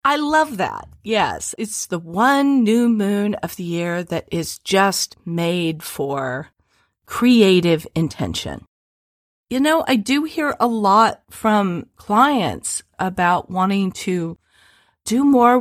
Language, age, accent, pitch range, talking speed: English, 40-59, American, 165-225 Hz, 125 wpm